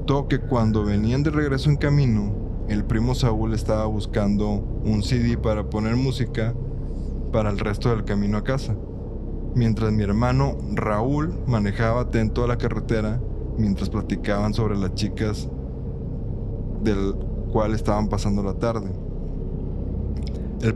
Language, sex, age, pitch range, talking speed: Spanish, male, 20-39, 100-120 Hz, 130 wpm